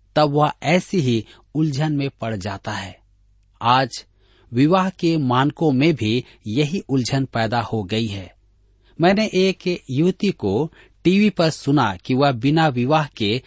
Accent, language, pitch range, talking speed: native, Hindi, 110-160 Hz, 145 wpm